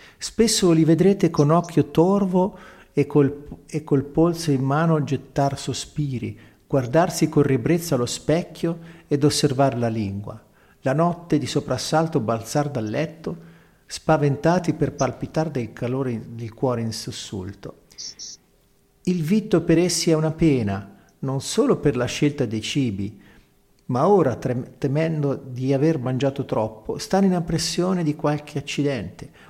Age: 50-69